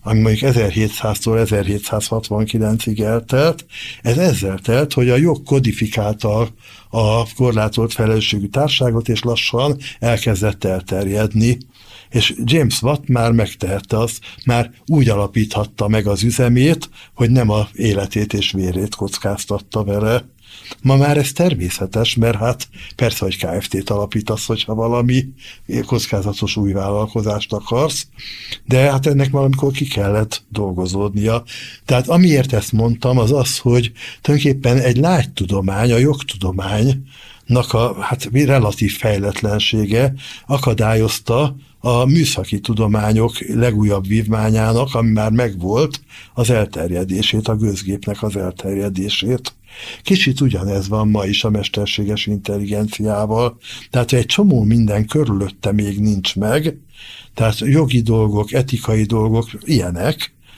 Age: 60-79